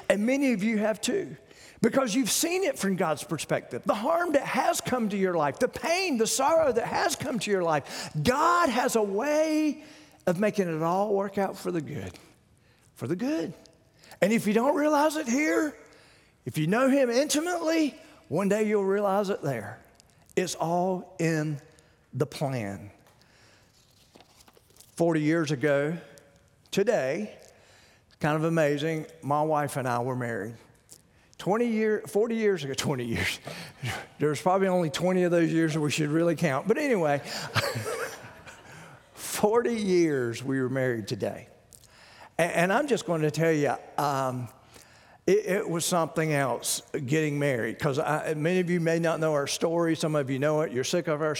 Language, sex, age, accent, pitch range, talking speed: English, male, 40-59, American, 145-210 Hz, 165 wpm